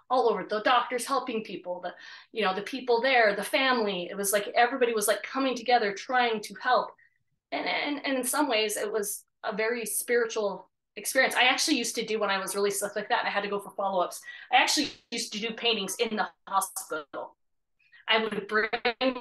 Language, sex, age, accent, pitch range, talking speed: English, female, 20-39, American, 210-255 Hz, 210 wpm